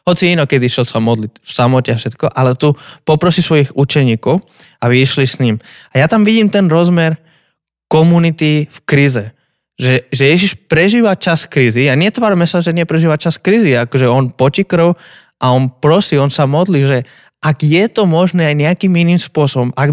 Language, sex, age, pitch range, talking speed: Slovak, male, 20-39, 130-170 Hz, 185 wpm